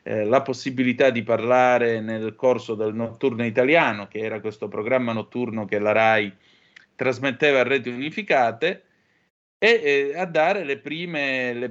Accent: native